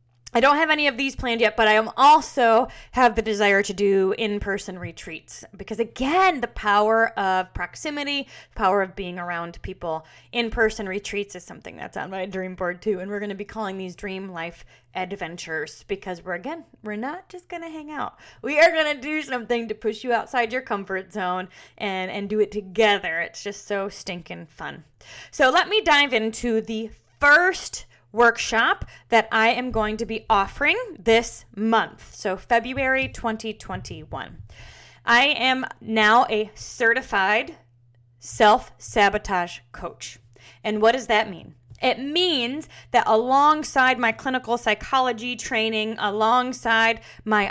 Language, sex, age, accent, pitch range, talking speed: English, female, 20-39, American, 195-250 Hz, 155 wpm